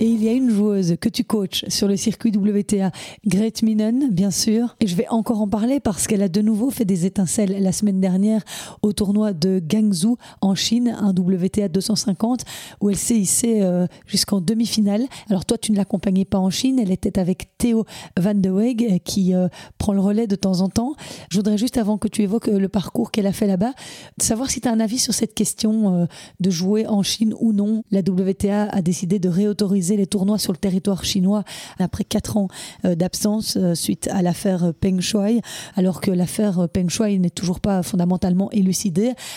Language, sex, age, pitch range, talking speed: French, female, 30-49, 185-215 Hz, 200 wpm